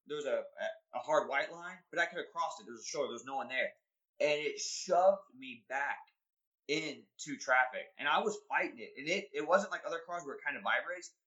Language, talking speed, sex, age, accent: English, 245 wpm, male, 20-39, American